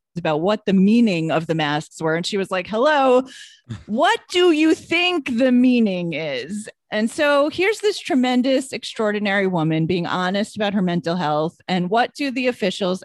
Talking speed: 175 wpm